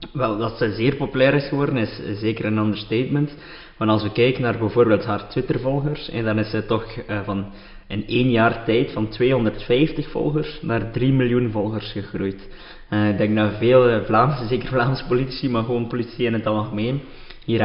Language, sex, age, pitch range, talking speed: Dutch, male, 20-39, 105-130 Hz, 180 wpm